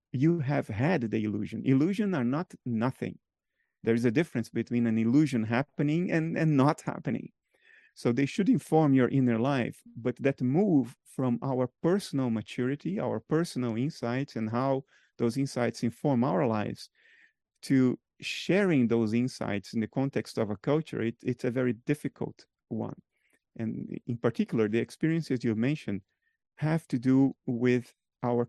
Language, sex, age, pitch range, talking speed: Russian, male, 30-49, 115-145 Hz, 155 wpm